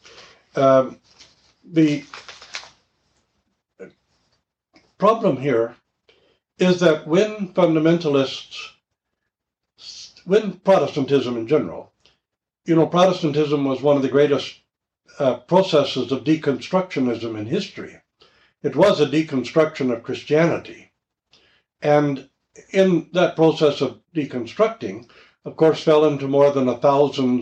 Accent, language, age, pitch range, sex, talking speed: American, English, 60-79, 130-160 Hz, male, 100 wpm